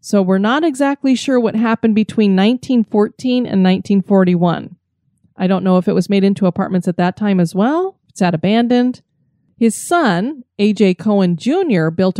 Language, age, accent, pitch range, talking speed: English, 30-49, American, 190-250 Hz, 165 wpm